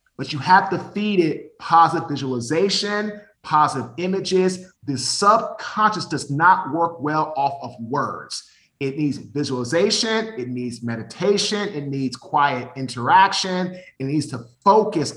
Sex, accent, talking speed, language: male, American, 130 wpm, English